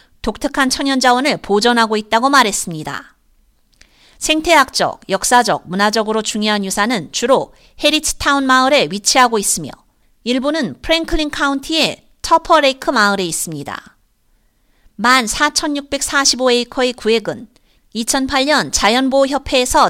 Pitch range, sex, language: 230-285 Hz, female, Korean